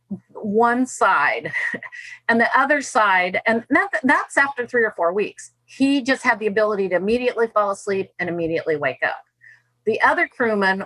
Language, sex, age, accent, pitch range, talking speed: English, female, 50-69, American, 190-235 Hz, 160 wpm